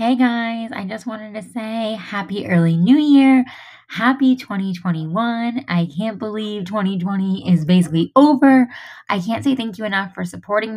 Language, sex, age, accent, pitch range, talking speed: English, female, 20-39, American, 175-230 Hz, 155 wpm